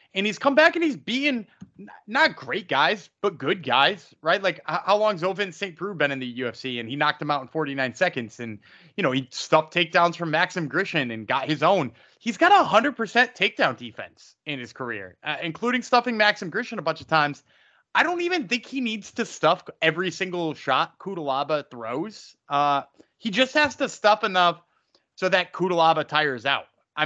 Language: English